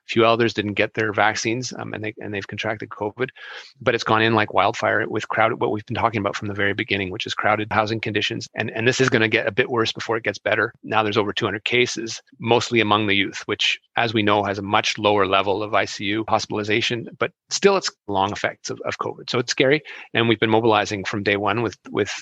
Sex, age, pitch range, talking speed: male, 30-49, 105-115 Hz, 245 wpm